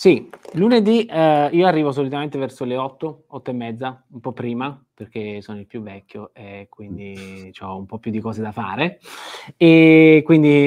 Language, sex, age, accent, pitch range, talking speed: Italian, male, 20-39, native, 125-155 Hz, 180 wpm